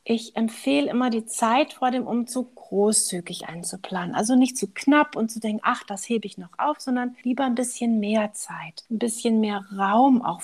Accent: German